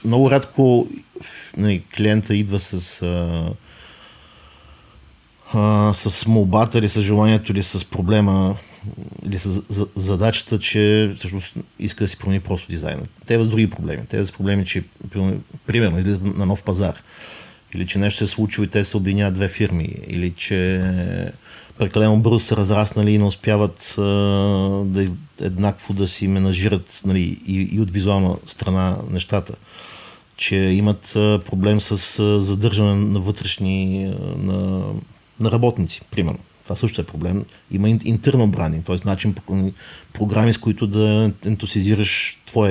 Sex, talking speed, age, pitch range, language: male, 140 wpm, 40-59, 95-110 Hz, Bulgarian